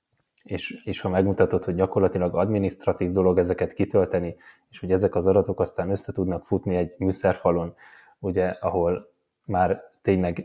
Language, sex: Hungarian, male